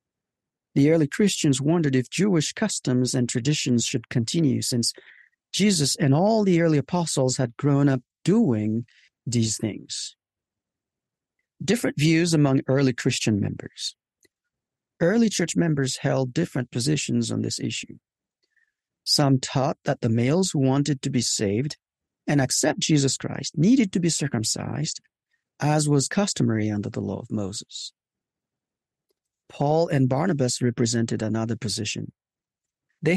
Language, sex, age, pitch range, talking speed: English, male, 50-69, 120-160 Hz, 130 wpm